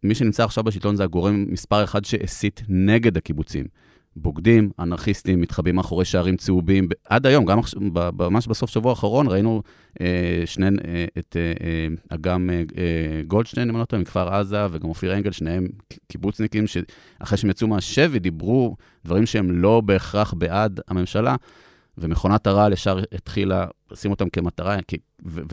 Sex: male